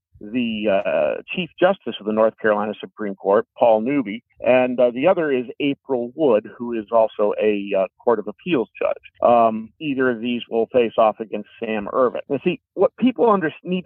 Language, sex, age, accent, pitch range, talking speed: English, male, 50-69, American, 120-170 Hz, 190 wpm